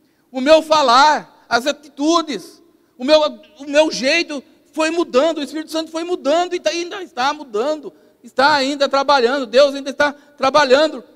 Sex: male